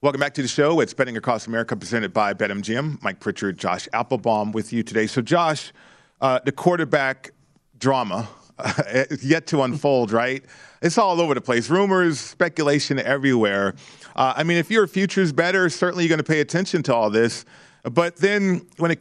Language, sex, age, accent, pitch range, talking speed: English, male, 40-59, American, 130-160 Hz, 190 wpm